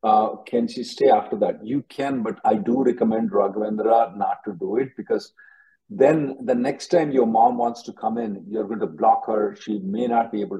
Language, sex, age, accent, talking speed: English, male, 50-69, Indian, 215 wpm